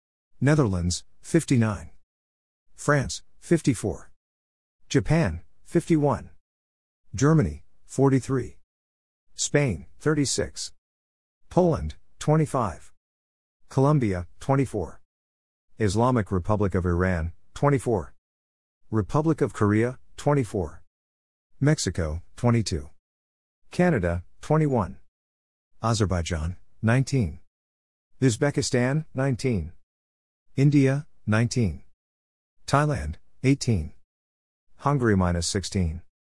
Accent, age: American, 50-69